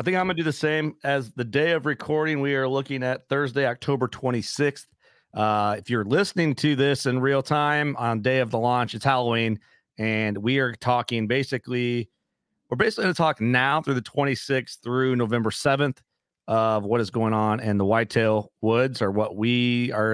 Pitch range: 110-135 Hz